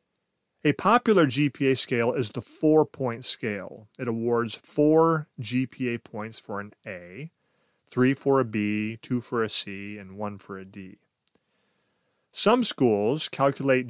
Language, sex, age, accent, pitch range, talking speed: English, male, 30-49, American, 110-140 Hz, 140 wpm